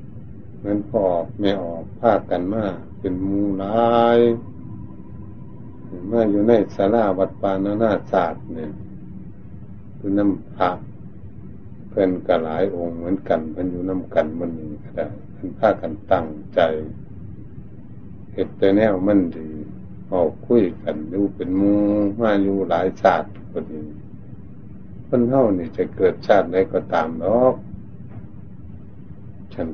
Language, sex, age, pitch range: Thai, male, 60-79, 95-115 Hz